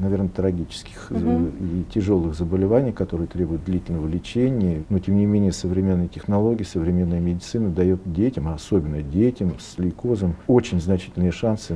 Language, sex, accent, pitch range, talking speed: Russian, male, native, 85-100 Hz, 135 wpm